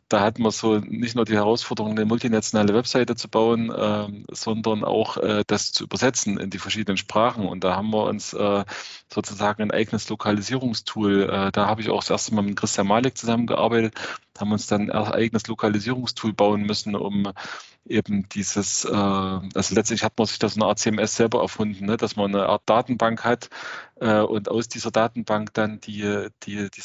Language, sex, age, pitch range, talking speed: German, male, 20-39, 105-115 Hz, 195 wpm